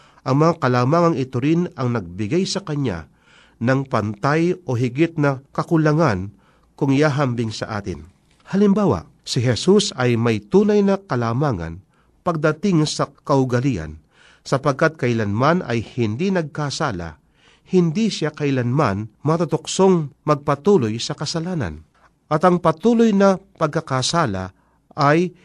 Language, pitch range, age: Filipino, 120-165 Hz, 50-69